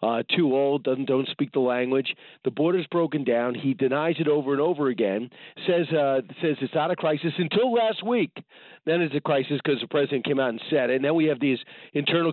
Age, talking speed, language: 40-59, 230 wpm, English